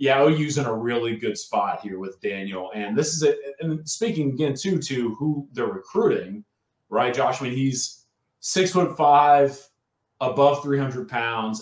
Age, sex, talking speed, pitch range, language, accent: 30-49, male, 165 wpm, 105-140 Hz, English, American